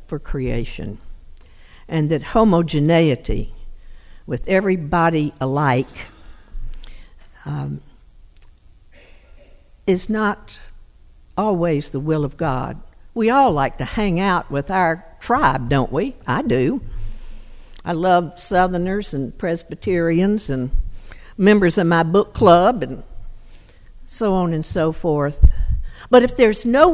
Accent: American